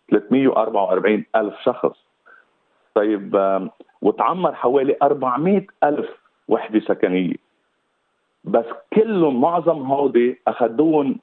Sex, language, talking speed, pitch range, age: male, Arabic, 80 wpm, 110-155 Hz, 50-69